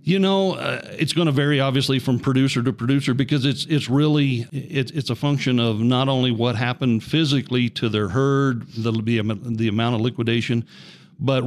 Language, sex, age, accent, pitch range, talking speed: English, male, 50-69, American, 115-140 Hz, 190 wpm